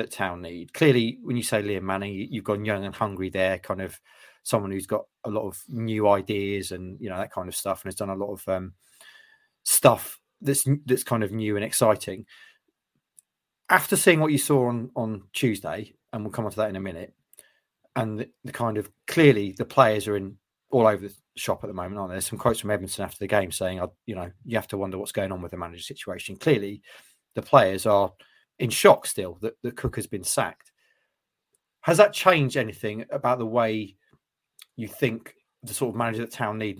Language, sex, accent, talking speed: English, male, British, 220 wpm